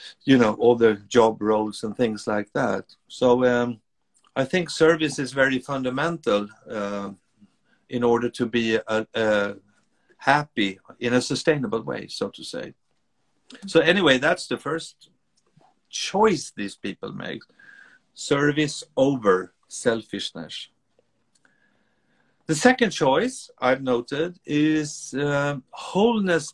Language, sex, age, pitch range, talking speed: English, male, 50-69, 120-175 Hz, 115 wpm